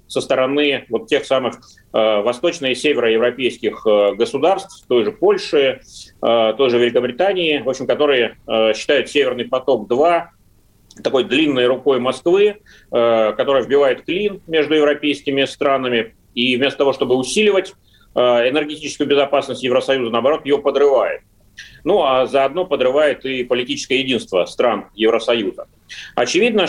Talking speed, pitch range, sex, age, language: 130 wpm, 120-165 Hz, male, 30-49, Russian